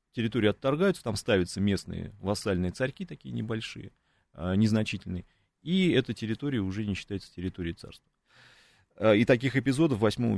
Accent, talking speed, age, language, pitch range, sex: native, 135 wpm, 30-49, Russian, 95-120 Hz, male